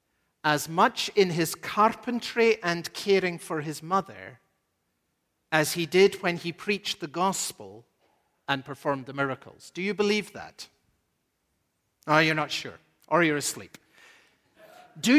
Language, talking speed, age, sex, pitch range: English, 135 wpm, 50-69, male, 180-250 Hz